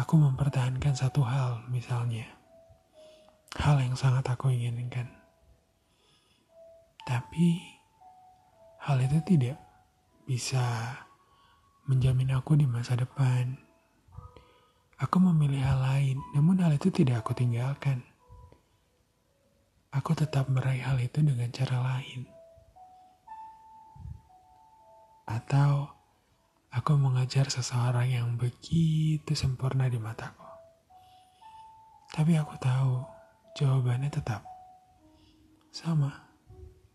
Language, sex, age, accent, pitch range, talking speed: Indonesian, male, 30-49, native, 125-155 Hz, 85 wpm